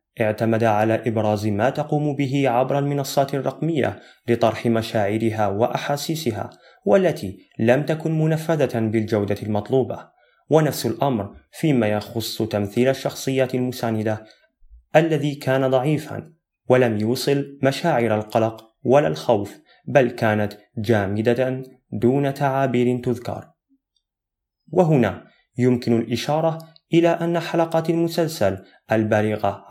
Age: 30-49